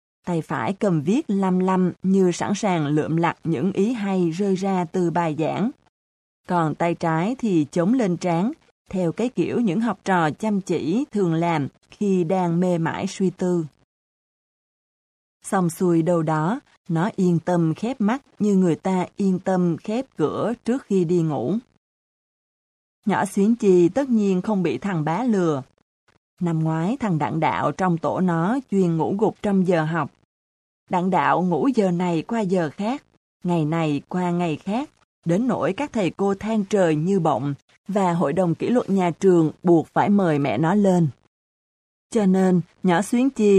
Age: 20-39